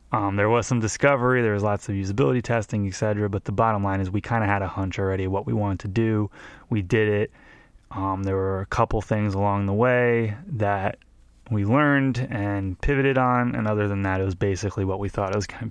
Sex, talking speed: male, 230 wpm